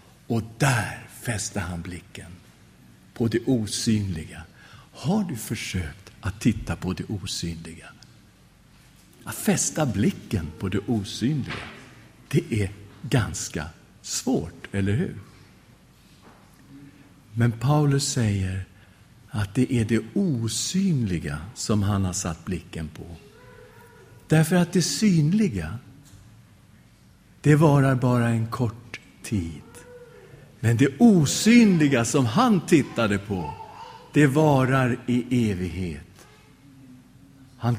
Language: English